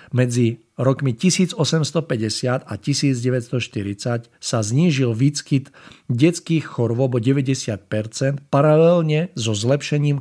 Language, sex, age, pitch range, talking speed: Czech, male, 50-69, 115-140 Hz, 90 wpm